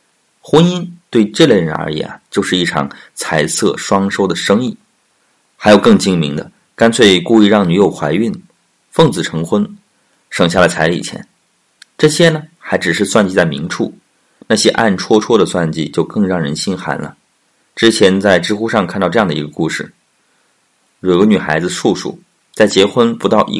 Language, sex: Chinese, male